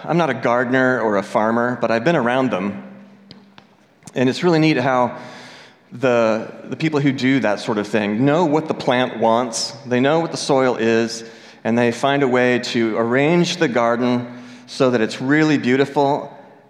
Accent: American